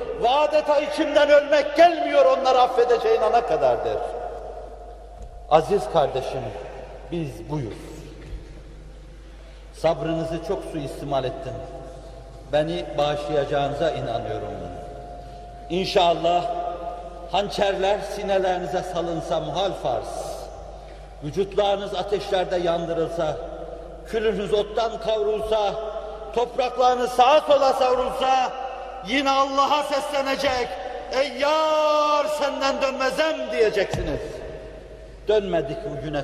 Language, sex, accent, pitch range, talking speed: Turkish, male, native, 160-250 Hz, 75 wpm